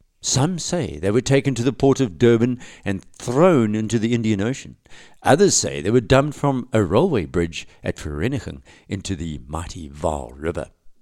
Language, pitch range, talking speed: English, 85-125 Hz, 175 wpm